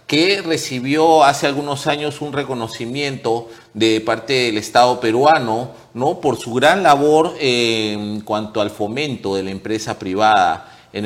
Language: Spanish